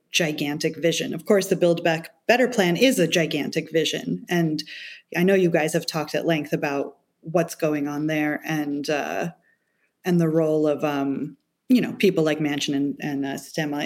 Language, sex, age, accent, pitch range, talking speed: English, female, 30-49, American, 150-180 Hz, 185 wpm